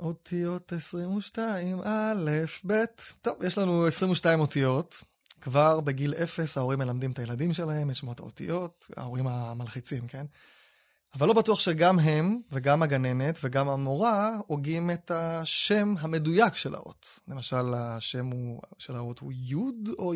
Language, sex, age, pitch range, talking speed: Hebrew, male, 20-39, 130-175 Hz, 135 wpm